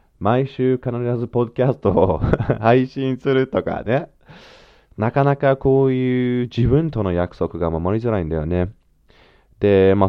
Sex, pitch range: male, 85-120 Hz